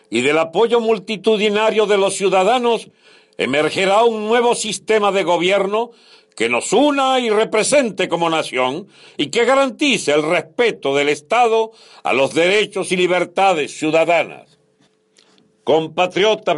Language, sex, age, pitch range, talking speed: Spanish, male, 60-79, 180-230 Hz, 125 wpm